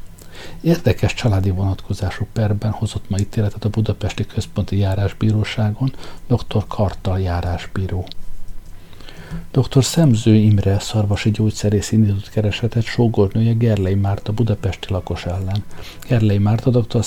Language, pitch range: Hungarian, 95-120 Hz